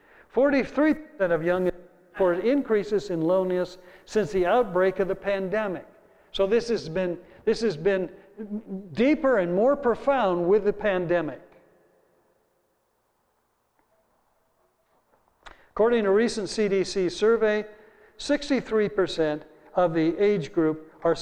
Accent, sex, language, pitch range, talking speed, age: American, male, English, 165-220 Hz, 115 wpm, 60-79